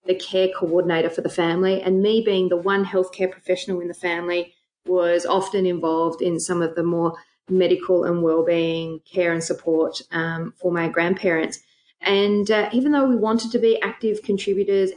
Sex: female